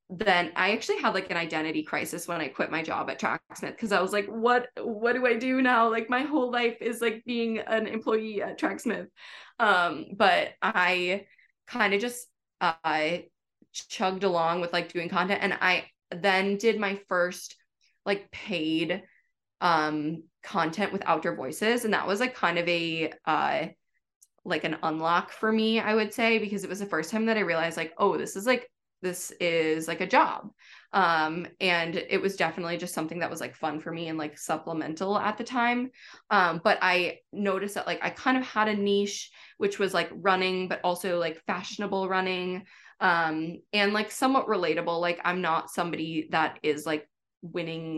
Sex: female